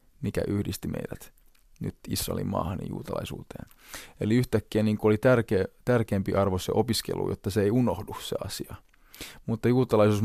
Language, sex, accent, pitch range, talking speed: Finnish, male, native, 100-120 Hz, 135 wpm